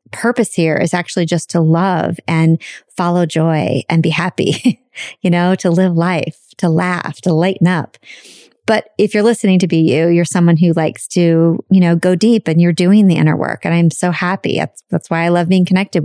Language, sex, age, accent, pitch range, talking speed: English, female, 30-49, American, 170-215 Hz, 210 wpm